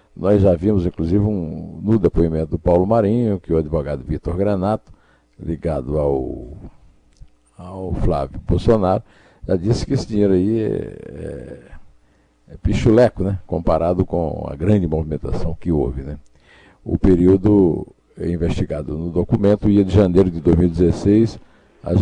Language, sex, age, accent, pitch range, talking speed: Portuguese, male, 50-69, Brazilian, 85-105 Hz, 135 wpm